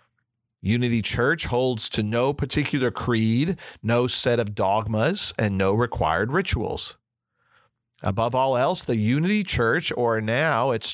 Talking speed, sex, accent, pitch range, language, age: 130 wpm, male, American, 110-135 Hz, English, 40-59